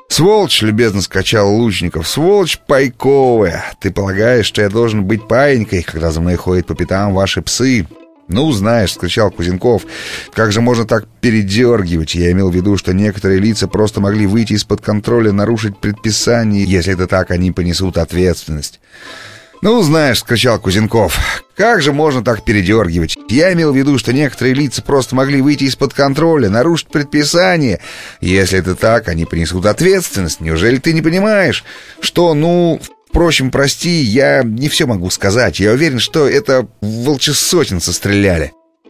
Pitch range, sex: 90-120 Hz, male